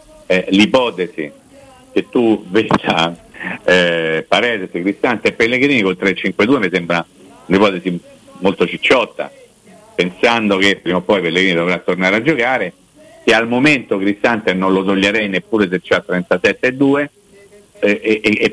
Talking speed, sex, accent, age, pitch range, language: 130 wpm, male, native, 50-69, 95-145 Hz, Italian